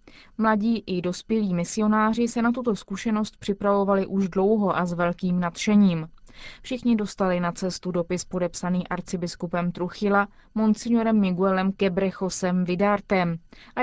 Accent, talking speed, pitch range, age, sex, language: native, 120 wpm, 180-215 Hz, 20-39, female, Czech